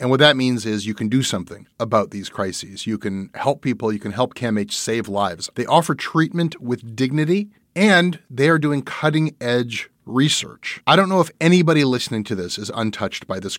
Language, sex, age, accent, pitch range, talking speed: English, male, 30-49, American, 110-150 Hz, 200 wpm